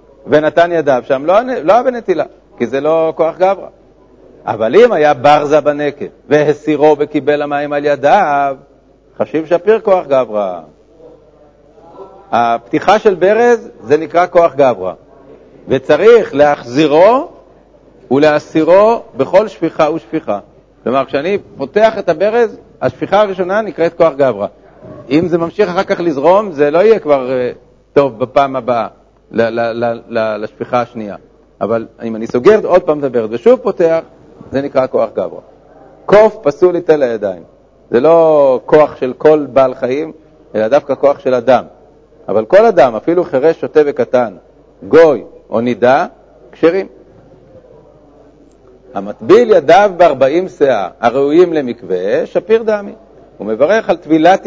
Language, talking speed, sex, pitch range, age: Hebrew, 130 wpm, male, 135-185 Hz, 60-79